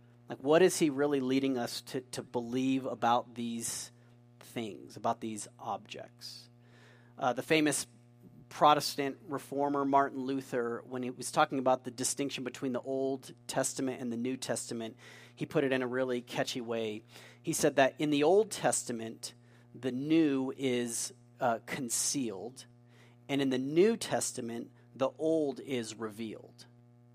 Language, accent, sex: English, American, male